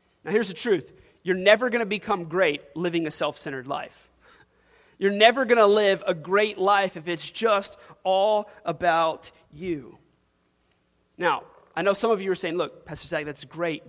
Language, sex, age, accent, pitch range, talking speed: English, male, 30-49, American, 150-195 Hz, 180 wpm